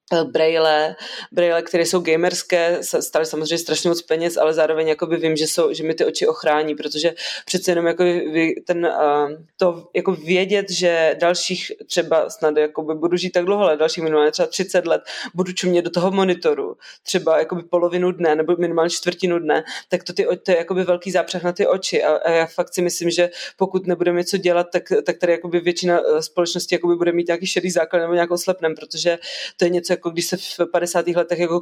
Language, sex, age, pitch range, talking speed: Czech, female, 20-39, 165-180 Hz, 200 wpm